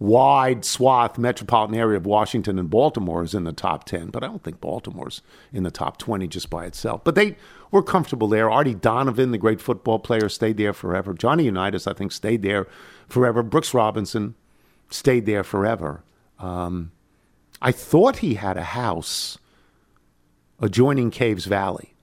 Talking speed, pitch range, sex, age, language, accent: 165 wpm, 90-125 Hz, male, 50-69, English, American